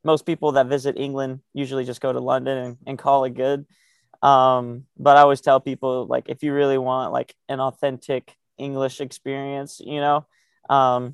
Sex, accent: male, American